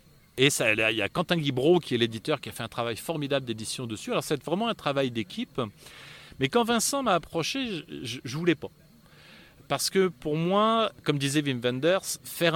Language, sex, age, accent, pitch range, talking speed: French, male, 40-59, French, 120-170 Hz, 200 wpm